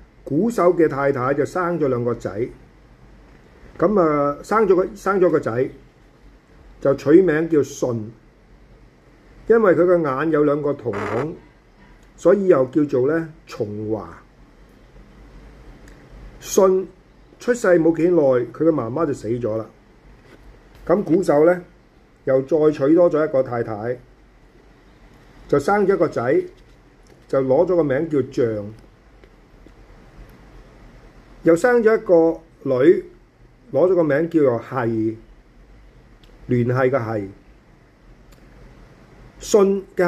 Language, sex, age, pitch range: Chinese, male, 50-69, 120-175 Hz